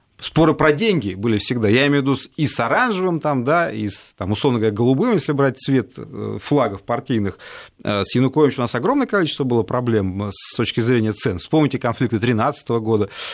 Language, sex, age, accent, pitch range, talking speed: Russian, male, 30-49, native, 120-185 Hz, 170 wpm